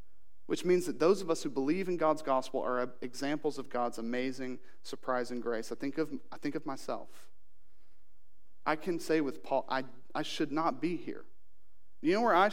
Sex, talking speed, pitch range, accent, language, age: male, 190 wpm, 125-160 Hz, American, English, 40-59